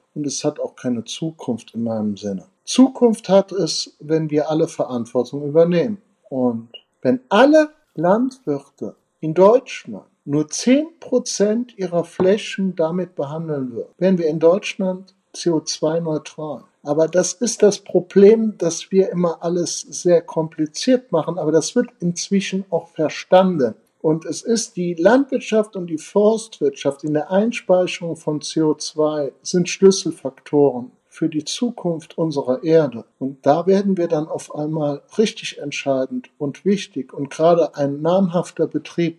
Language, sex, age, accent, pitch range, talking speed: German, male, 60-79, German, 145-190 Hz, 135 wpm